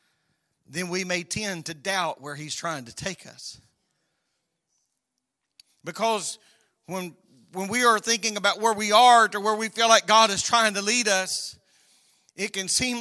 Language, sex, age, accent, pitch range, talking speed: English, male, 40-59, American, 215-260 Hz, 165 wpm